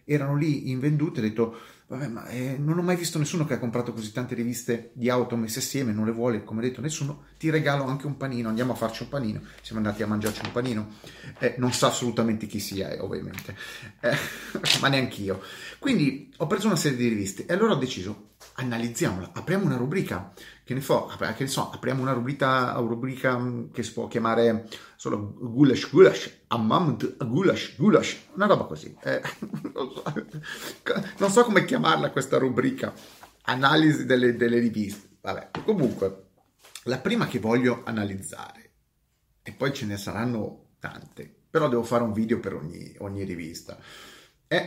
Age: 30-49